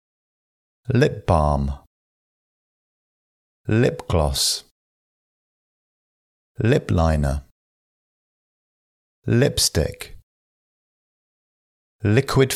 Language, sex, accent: English, male, British